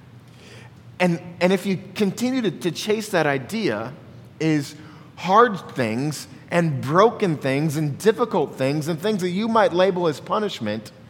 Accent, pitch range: American, 140-195 Hz